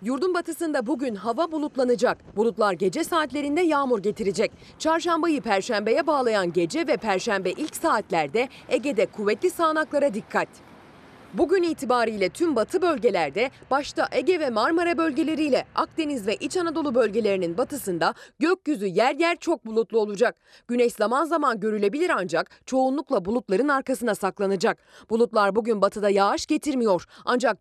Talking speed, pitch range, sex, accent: 130 wpm, 205-315 Hz, female, native